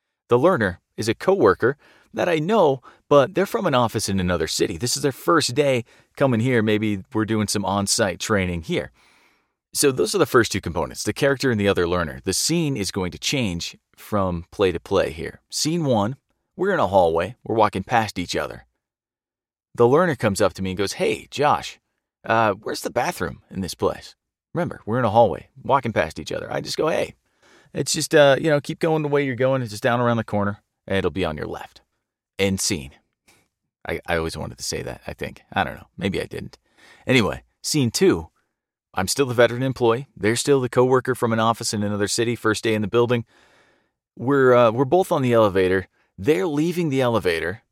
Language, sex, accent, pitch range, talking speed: English, male, American, 100-135 Hz, 215 wpm